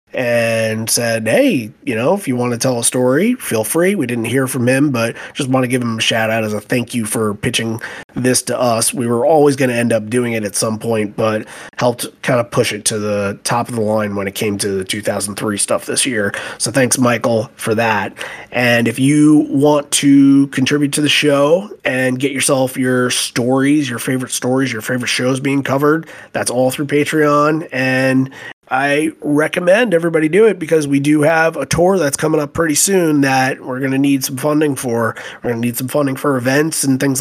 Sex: male